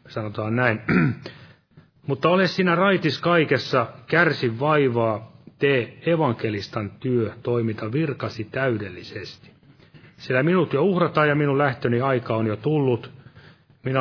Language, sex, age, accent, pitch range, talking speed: Finnish, male, 30-49, native, 115-145 Hz, 115 wpm